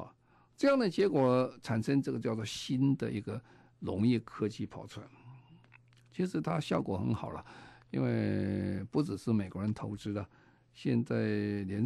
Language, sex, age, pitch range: Chinese, male, 50-69, 100-130 Hz